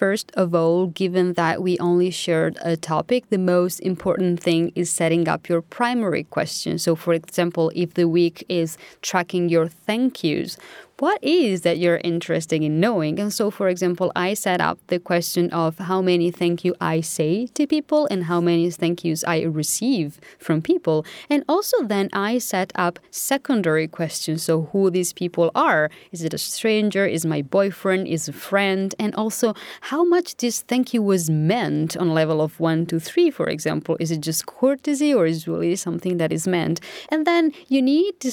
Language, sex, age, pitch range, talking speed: English, female, 30-49, 165-215 Hz, 190 wpm